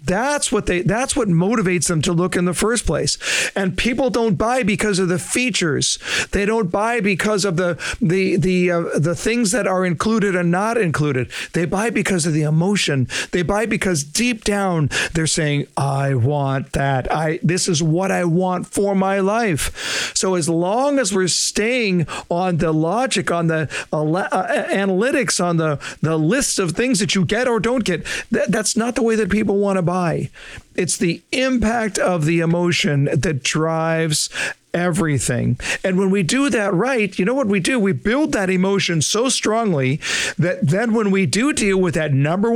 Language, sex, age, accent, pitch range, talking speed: English, male, 50-69, American, 165-210 Hz, 190 wpm